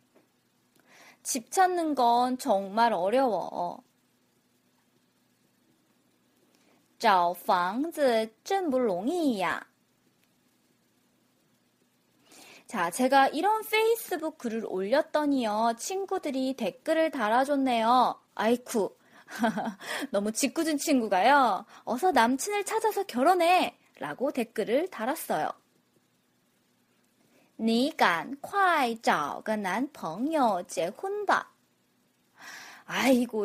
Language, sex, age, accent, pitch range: Korean, female, 20-39, native, 230-335 Hz